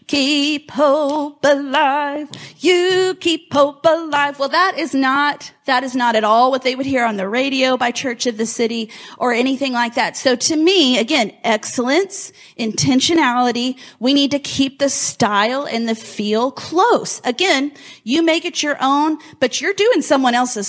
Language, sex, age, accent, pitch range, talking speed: English, female, 30-49, American, 240-290 Hz, 170 wpm